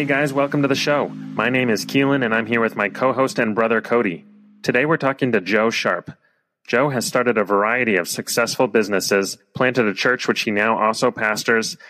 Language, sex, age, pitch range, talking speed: English, male, 30-49, 105-125 Hz, 210 wpm